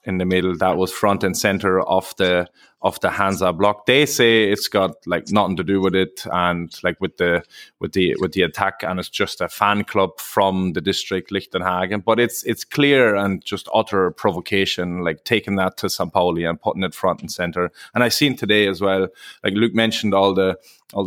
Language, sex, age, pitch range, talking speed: English, male, 20-39, 95-105 Hz, 215 wpm